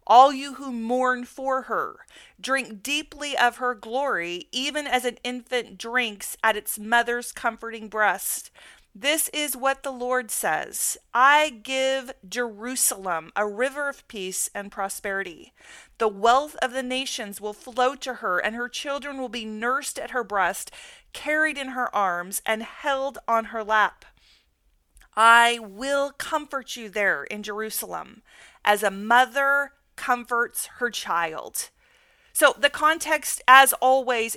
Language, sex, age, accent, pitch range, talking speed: English, female, 30-49, American, 225-275 Hz, 140 wpm